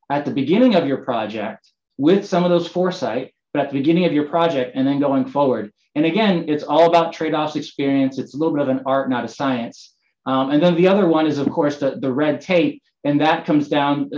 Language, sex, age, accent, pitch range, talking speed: English, male, 20-39, American, 135-170 Hz, 235 wpm